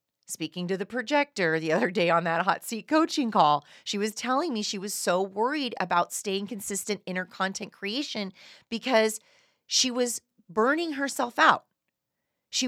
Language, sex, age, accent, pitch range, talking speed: English, female, 30-49, American, 175-235 Hz, 165 wpm